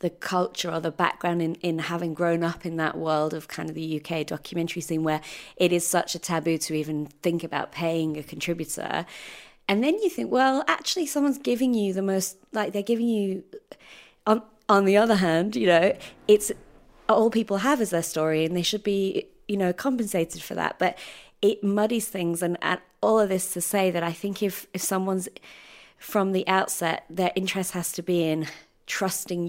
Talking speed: 200 wpm